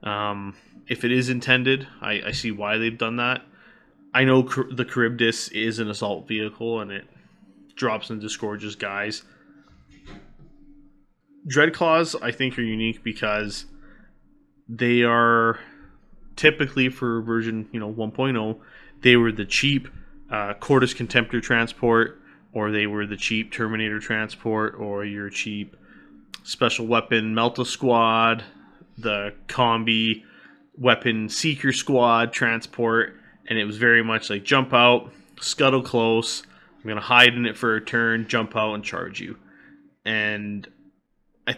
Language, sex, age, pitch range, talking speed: English, male, 20-39, 105-125 Hz, 135 wpm